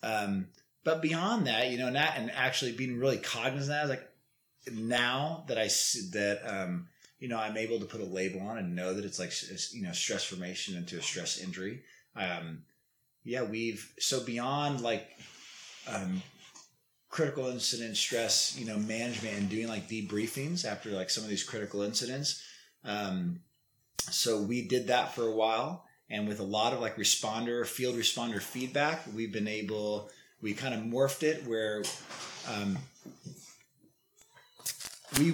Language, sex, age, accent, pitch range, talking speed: English, male, 30-49, American, 105-135 Hz, 170 wpm